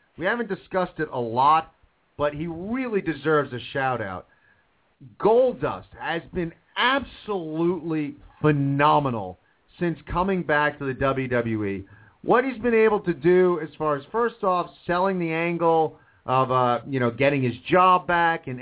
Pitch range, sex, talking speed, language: 135-185 Hz, male, 150 wpm, English